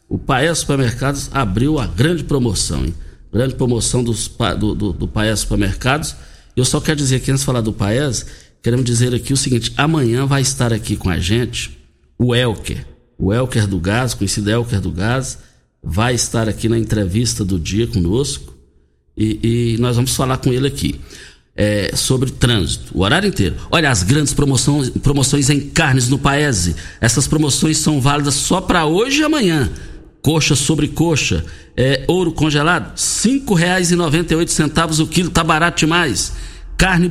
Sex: male